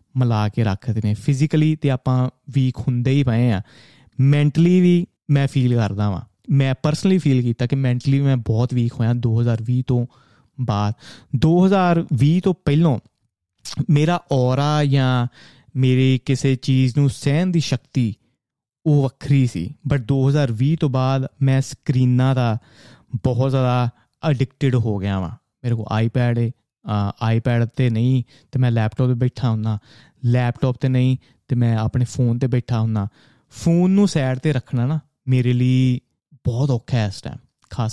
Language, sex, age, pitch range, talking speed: Punjabi, male, 30-49, 120-145 Hz, 155 wpm